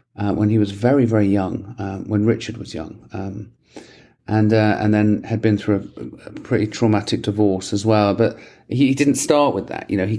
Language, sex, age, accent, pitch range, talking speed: English, male, 40-59, British, 100-115 Hz, 220 wpm